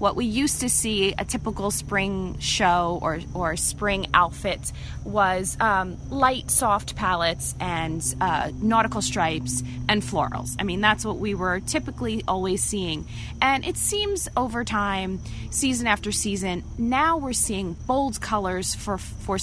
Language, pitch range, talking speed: English, 185-225 Hz, 150 wpm